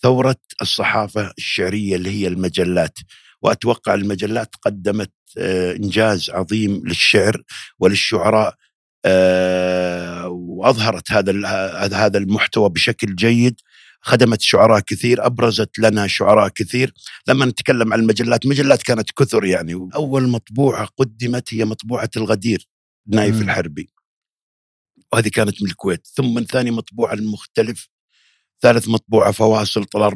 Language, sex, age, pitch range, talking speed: Arabic, male, 50-69, 100-125 Hz, 105 wpm